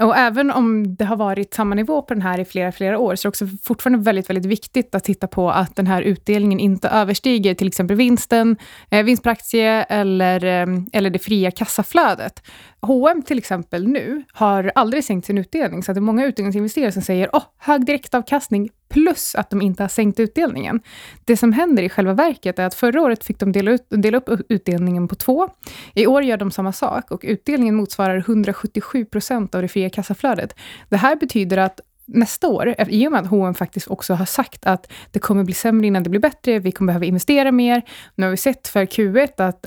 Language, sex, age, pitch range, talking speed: Swedish, female, 20-39, 190-245 Hz, 205 wpm